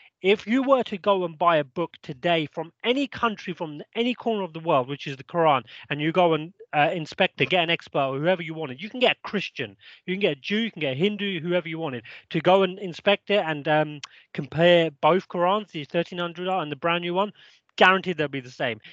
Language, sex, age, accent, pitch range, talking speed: English, male, 30-49, British, 145-195 Hz, 240 wpm